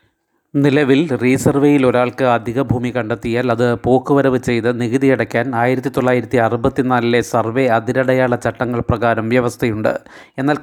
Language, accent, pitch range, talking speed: Malayalam, native, 120-135 Hz, 105 wpm